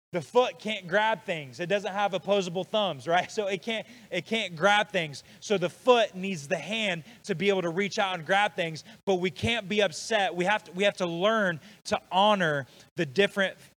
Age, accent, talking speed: 20-39, American, 215 wpm